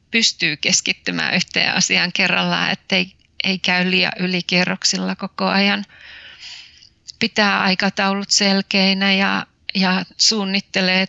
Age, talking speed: 30-49, 95 wpm